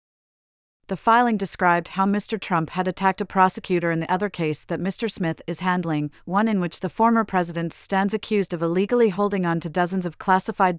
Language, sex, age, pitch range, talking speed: English, female, 40-59, 170-195 Hz, 195 wpm